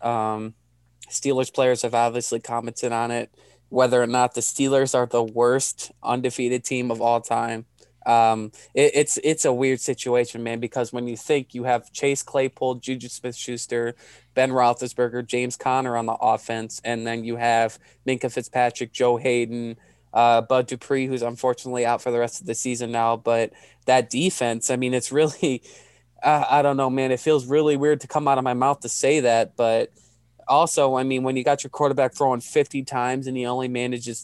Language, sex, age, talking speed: English, male, 20-39, 190 wpm